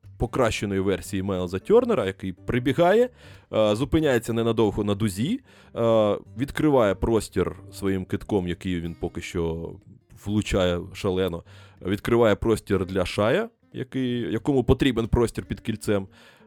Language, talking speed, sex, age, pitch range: Ukrainian, 105 wpm, male, 20-39, 90-115 Hz